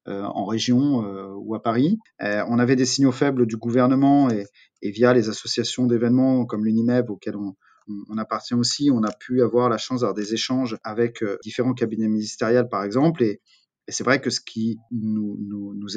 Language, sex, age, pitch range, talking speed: French, male, 30-49, 110-130 Hz, 205 wpm